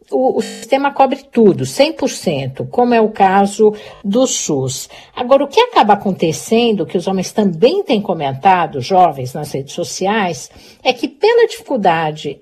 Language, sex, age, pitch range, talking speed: Portuguese, female, 60-79, 195-270 Hz, 150 wpm